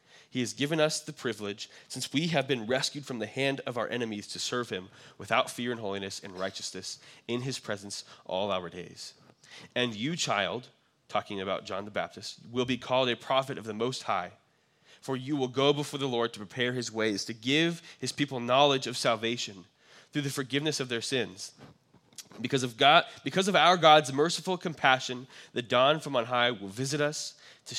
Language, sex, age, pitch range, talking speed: English, male, 20-39, 120-140 Hz, 190 wpm